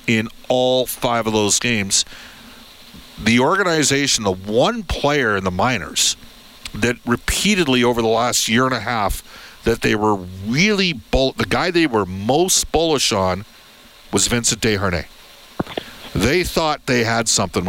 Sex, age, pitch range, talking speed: male, 50-69, 110-150 Hz, 145 wpm